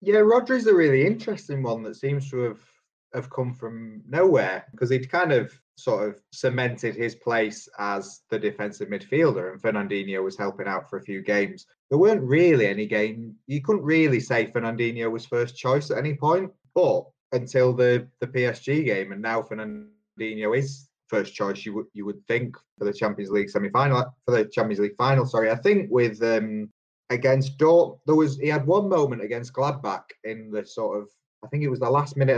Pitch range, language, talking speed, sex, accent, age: 105-135 Hz, English, 190 wpm, male, British, 20-39